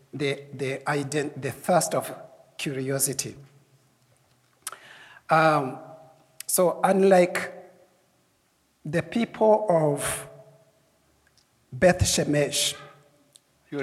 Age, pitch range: 60-79, 135-170 Hz